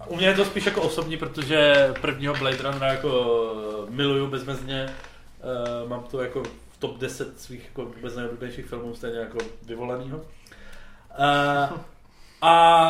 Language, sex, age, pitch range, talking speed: Czech, male, 20-39, 125-155 Hz, 130 wpm